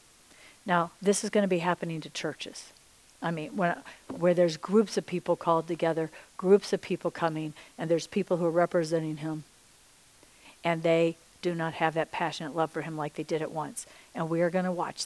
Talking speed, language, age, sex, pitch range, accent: 205 wpm, English, 50-69, female, 165-180 Hz, American